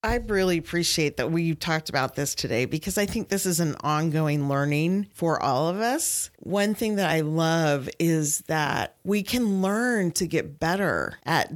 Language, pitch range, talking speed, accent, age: English, 155-200 Hz, 180 wpm, American, 40-59